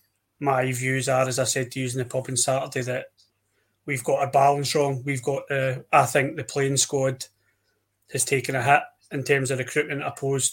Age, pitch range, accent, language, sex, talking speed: 20-39, 130-145 Hz, British, English, male, 205 wpm